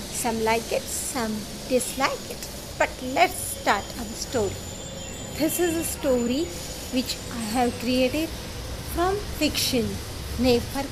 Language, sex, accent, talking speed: English, female, Indian, 120 wpm